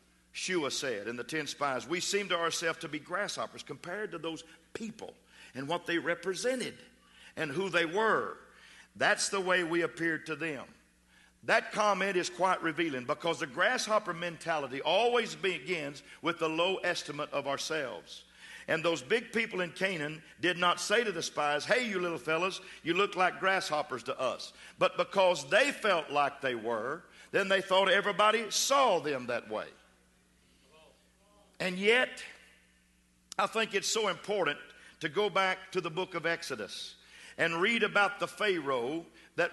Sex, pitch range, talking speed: male, 160-205 Hz, 160 wpm